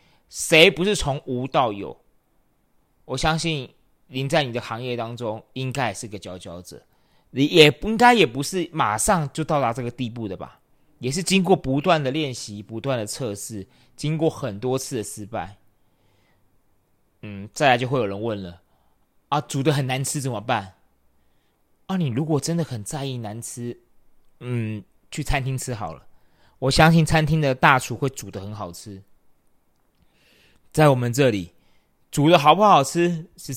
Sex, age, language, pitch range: male, 30-49, Chinese, 100-150 Hz